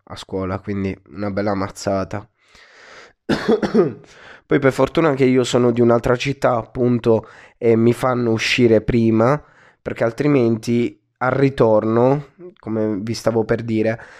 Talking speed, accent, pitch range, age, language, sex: 125 wpm, native, 105-120 Hz, 20-39, Italian, male